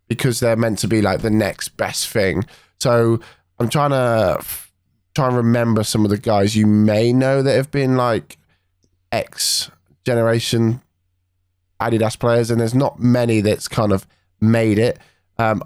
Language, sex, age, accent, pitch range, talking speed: English, male, 20-39, British, 95-115 Hz, 160 wpm